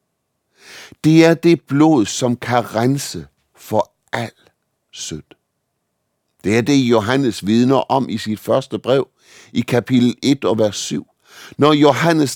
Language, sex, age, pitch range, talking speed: Danish, male, 60-79, 115-150 Hz, 135 wpm